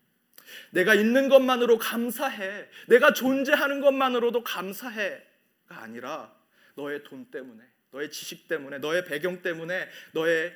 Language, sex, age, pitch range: Korean, male, 30-49, 175-240 Hz